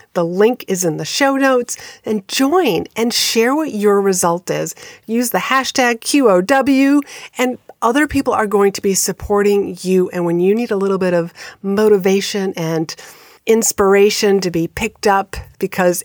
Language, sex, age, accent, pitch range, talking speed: English, female, 40-59, American, 175-220 Hz, 165 wpm